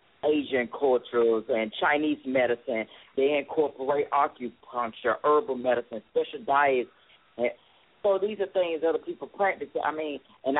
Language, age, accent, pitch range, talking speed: English, 40-59, American, 130-195 Hz, 130 wpm